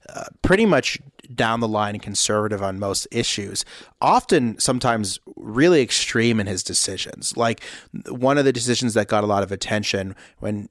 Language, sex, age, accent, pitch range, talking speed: English, male, 30-49, American, 105-125 Hz, 165 wpm